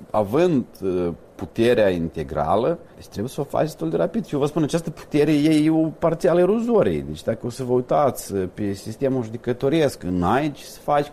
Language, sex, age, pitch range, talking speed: Romanian, male, 40-59, 100-140 Hz, 190 wpm